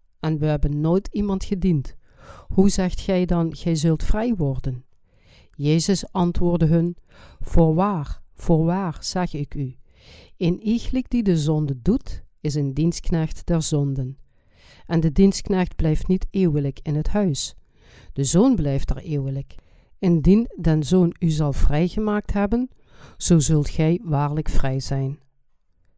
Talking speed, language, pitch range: 140 wpm, Dutch, 145-185 Hz